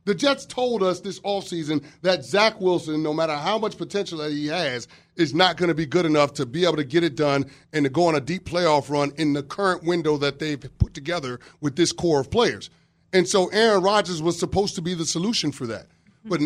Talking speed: 235 wpm